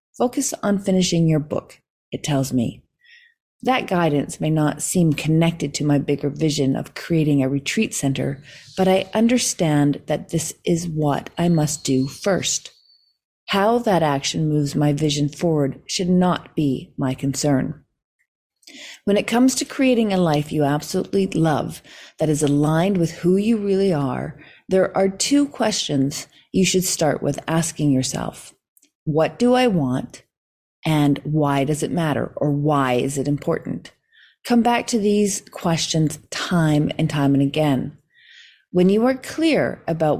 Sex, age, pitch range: female, 40-59, 145-195 Hz